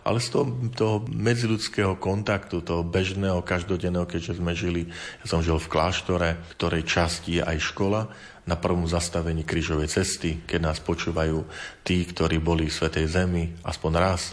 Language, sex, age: Slovak, male, 40-59